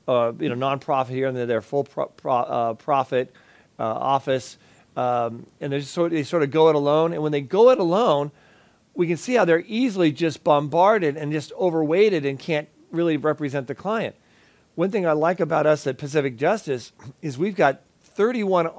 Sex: male